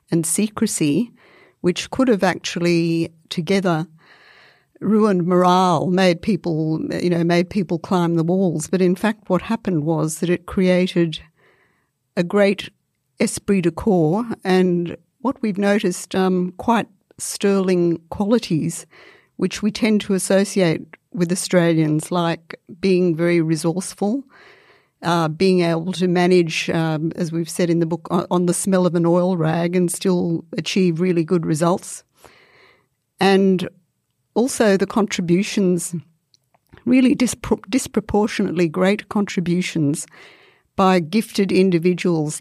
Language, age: English, 60-79